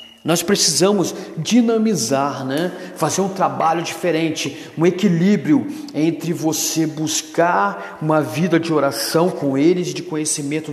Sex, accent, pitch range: male, Brazilian, 155-180 Hz